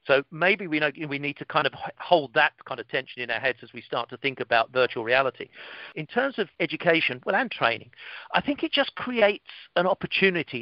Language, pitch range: English, 140-185 Hz